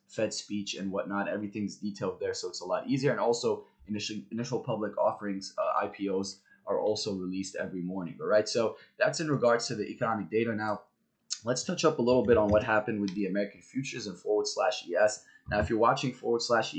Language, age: English, 20-39